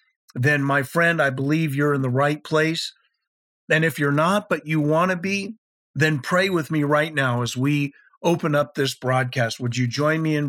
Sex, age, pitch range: male, 50-69, 140-180 Hz